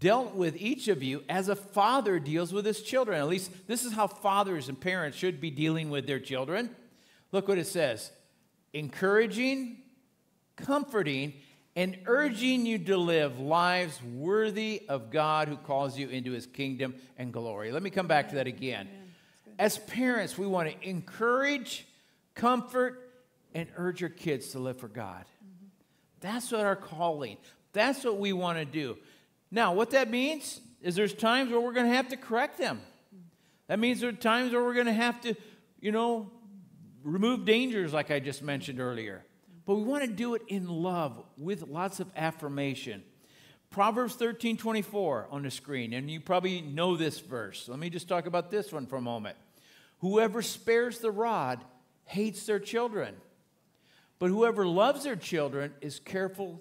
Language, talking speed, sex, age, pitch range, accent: English, 175 wpm, male, 50-69, 150-225 Hz, American